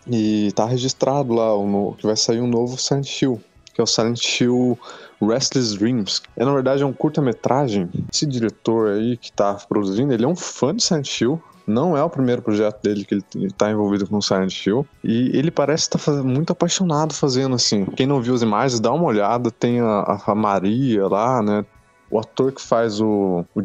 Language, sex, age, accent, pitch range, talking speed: Portuguese, male, 20-39, Brazilian, 105-130 Hz, 205 wpm